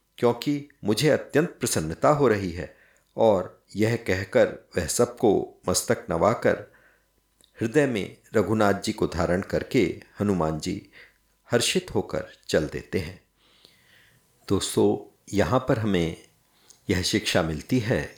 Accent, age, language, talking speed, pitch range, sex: native, 50-69, Hindi, 120 wpm, 100-140 Hz, male